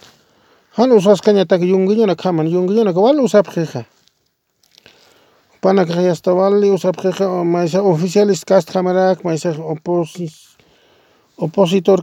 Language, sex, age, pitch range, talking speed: English, male, 40-59, 160-210 Hz, 95 wpm